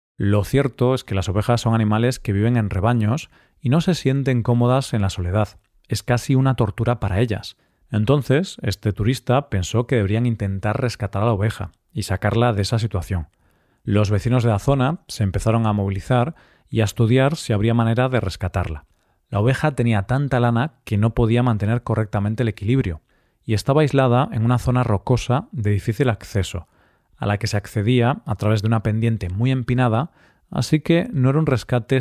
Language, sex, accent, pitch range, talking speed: Spanish, male, Spanish, 105-125 Hz, 185 wpm